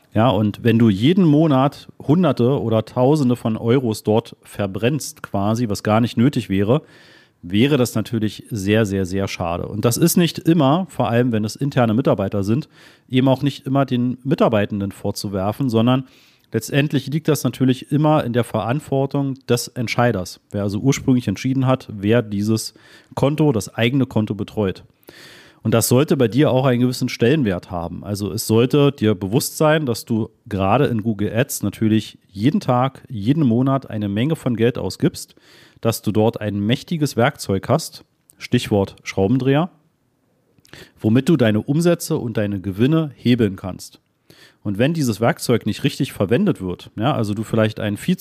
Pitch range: 110-140 Hz